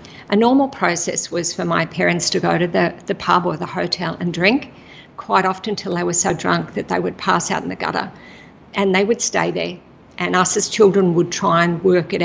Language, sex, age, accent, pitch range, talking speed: English, female, 50-69, Australian, 175-200 Hz, 230 wpm